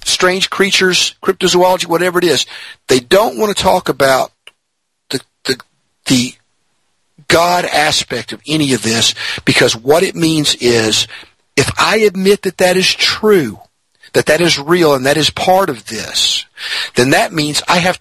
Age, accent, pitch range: 50-69, American, 135-190 Hz